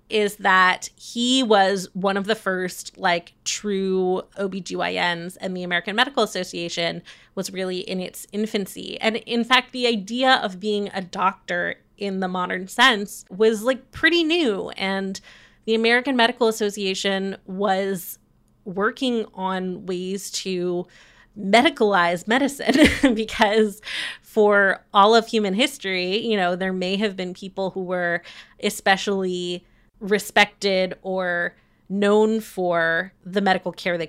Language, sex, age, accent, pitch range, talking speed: English, female, 20-39, American, 185-225 Hz, 130 wpm